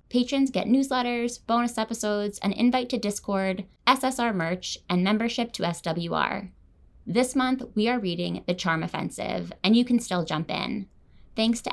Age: 20-39